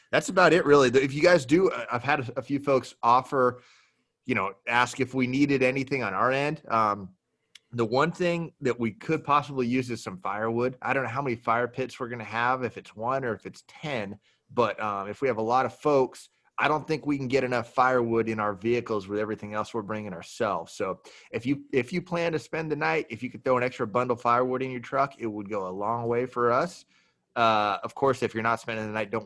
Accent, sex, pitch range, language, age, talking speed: American, male, 110-135 Hz, English, 30-49, 240 wpm